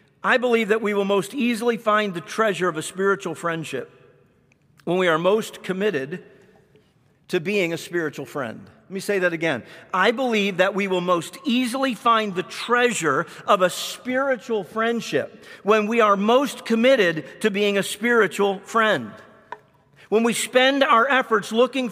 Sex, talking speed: male, 160 wpm